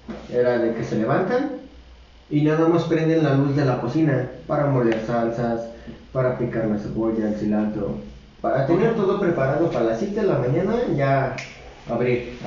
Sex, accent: male, Mexican